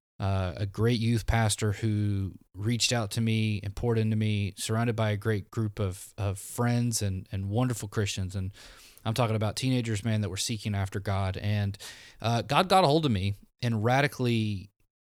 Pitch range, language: 100-125 Hz, English